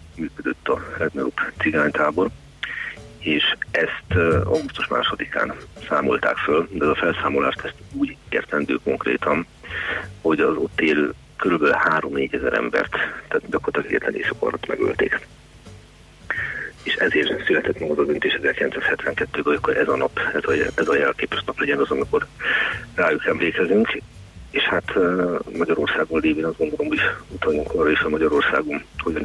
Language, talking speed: Hungarian, 145 wpm